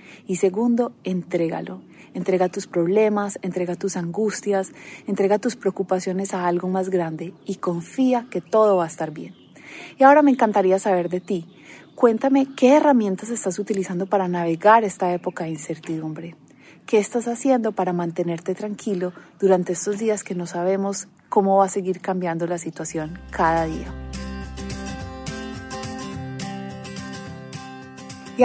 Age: 30-49